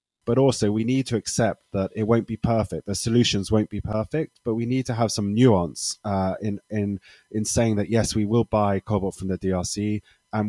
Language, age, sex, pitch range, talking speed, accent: English, 30-49, male, 95-115 Hz, 215 wpm, British